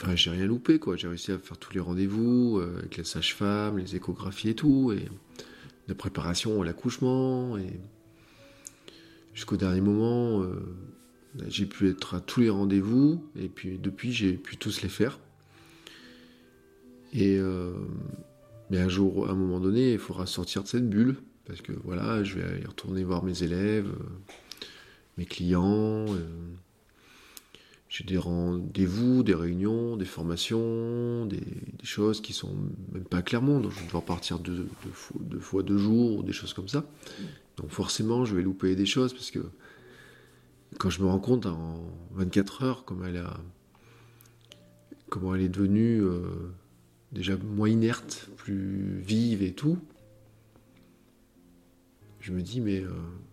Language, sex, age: French, male, 40-59